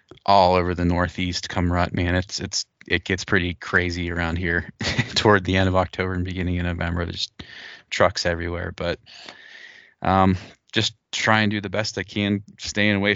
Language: English